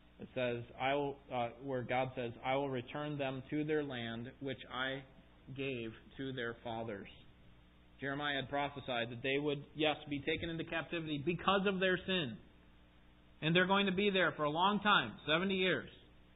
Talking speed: 170 wpm